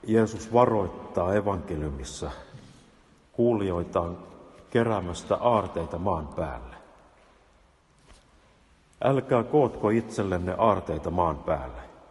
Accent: native